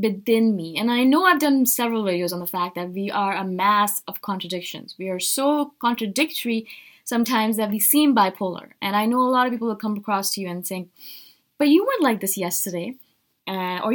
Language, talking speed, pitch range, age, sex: English, 210 wpm, 190-250 Hz, 20-39, female